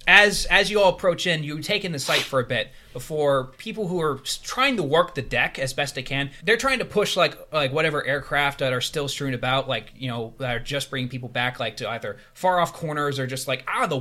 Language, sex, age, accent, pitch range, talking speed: English, male, 20-39, American, 125-155 Hz, 255 wpm